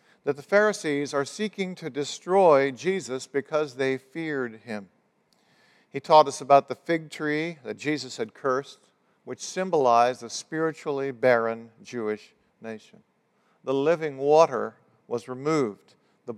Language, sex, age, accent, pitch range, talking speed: English, male, 50-69, American, 120-160 Hz, 130 wpm